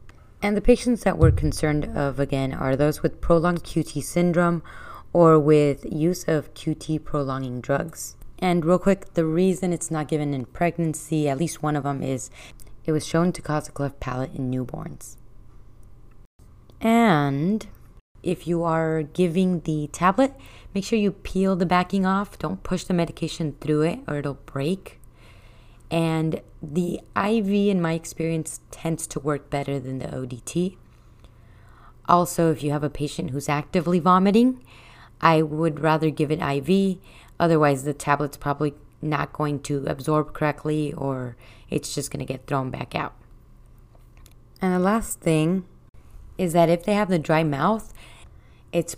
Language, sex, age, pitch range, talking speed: English, female, 20-39, 140-175 Hz, 155 wpm